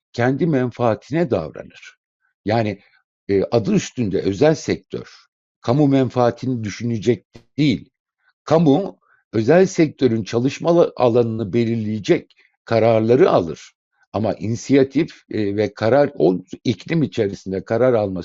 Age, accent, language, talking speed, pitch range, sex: 60-79, native, Turkish, 100 wpm, 105-145 Hz, male